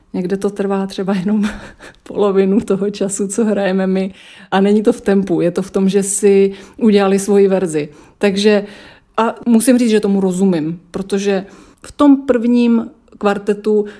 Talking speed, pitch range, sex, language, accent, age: 160 wpm, 185-210 Hz, female, Czech, native, 30-49